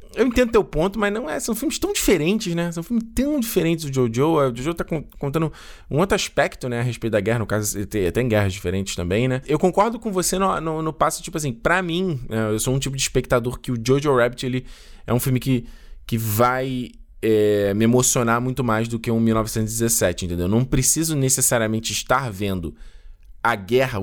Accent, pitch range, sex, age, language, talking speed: Brazilian, 105-160 Hz, male, 20-39, Portuguese, 205 wpm